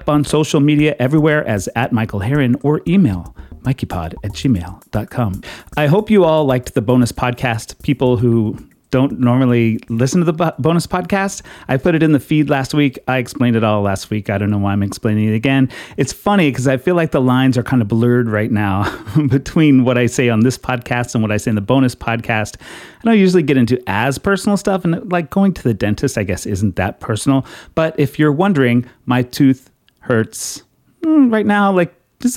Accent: American